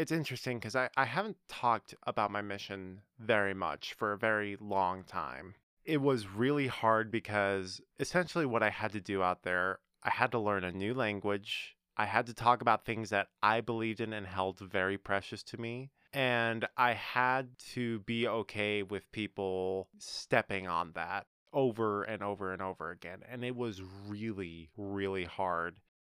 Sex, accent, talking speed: male, American, 175 wpm